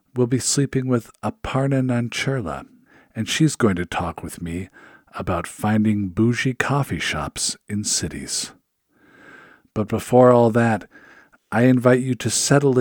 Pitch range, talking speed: 90-125 Hz, 135 wpm